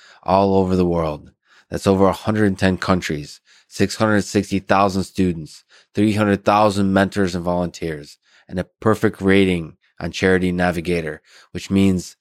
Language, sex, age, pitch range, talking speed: English, male, 20-39, 85-100 Hz, 115 wpm